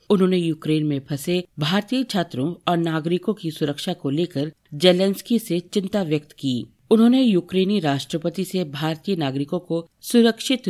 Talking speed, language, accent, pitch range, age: 140 wpm, Hindi, native, 150-195 Hz, 50-69